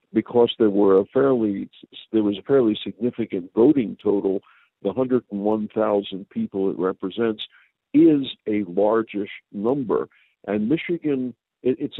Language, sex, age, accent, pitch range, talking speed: English, male, 60-79, American, 100-125 Hz, 135 wpm